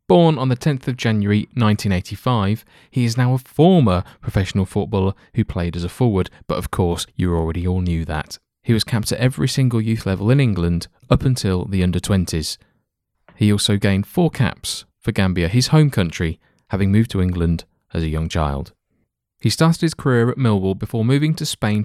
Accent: British